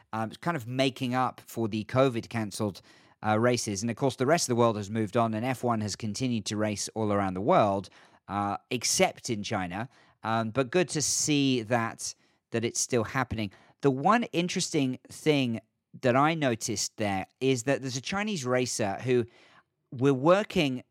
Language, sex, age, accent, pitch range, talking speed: English, male, 40-59, British, 110-140 Hz, 180 wpm